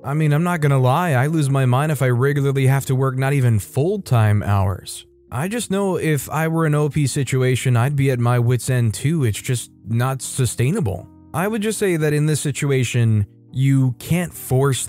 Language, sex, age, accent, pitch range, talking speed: English, male, 20-39, American, 115-150 Hz, 205 wpm